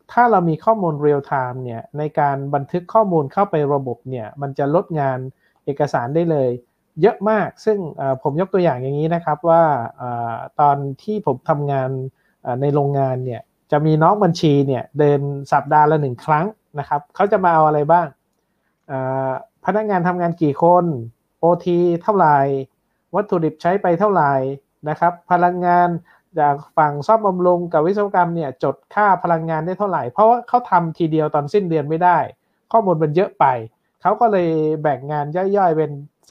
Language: Thai